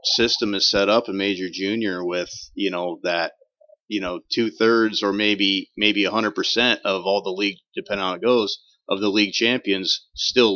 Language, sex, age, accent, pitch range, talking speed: English, male, 30-49, American, 95-115 Hz, 195 wpm